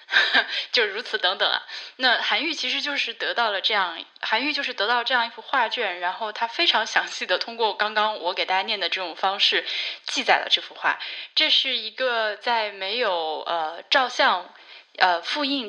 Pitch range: 200-280 Hz